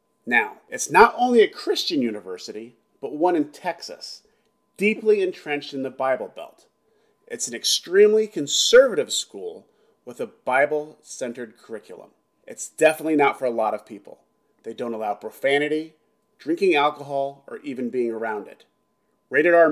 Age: 30-49